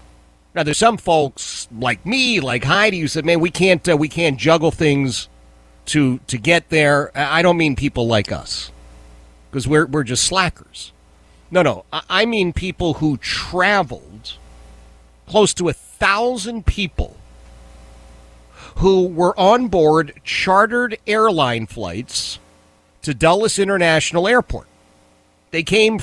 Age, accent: 40-59, American